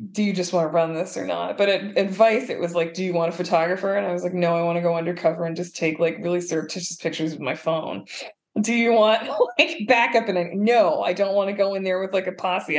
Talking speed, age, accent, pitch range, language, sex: 270 wpm, 20-39, American, 165-200 Hz, English, female